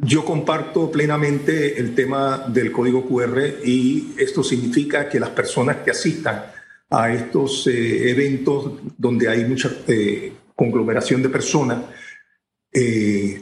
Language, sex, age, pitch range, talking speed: Spanish, male, 50-69, 125-150 Hz, 125 wpm